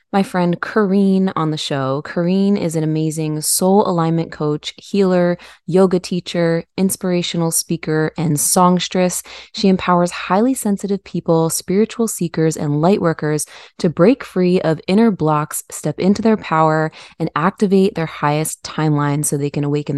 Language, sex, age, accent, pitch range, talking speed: English, female, 20-39, American, 160-195 Hz, 145 wpm